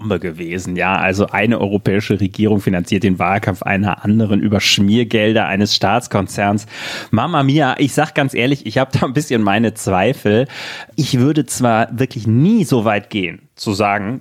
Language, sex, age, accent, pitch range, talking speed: German, male, 30-49, German, 100-125 Hz, 160 wpm